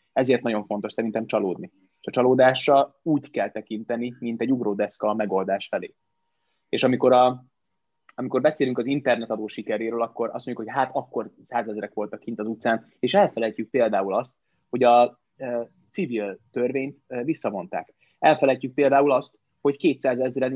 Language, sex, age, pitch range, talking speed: Hungarian, male, 20-39, 110-135 Hz, 145 wpm